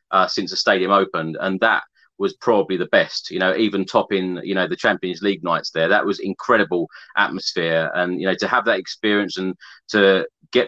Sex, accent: male, British